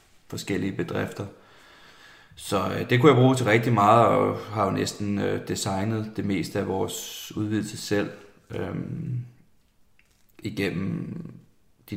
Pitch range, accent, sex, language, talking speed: 95-115 Hz, native, male, Danish, 130 wpm